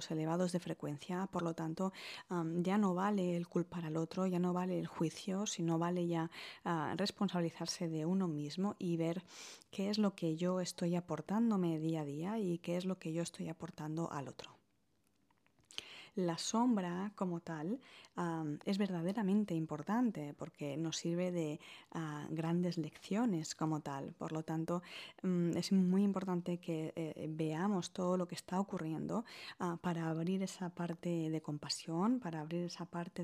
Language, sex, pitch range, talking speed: Spanish, female, 165-190 Hz, 155 wpm